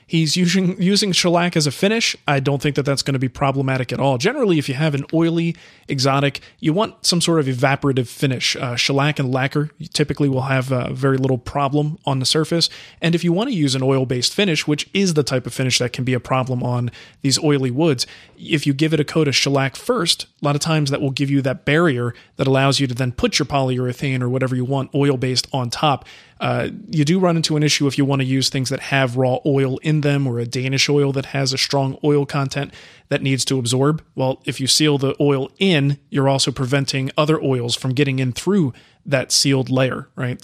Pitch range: 130-155 Hz